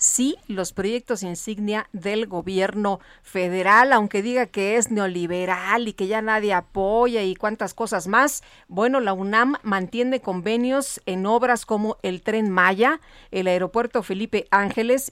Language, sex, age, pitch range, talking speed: Spanish, female, 40-59, 190-240 Hz, 145 wpm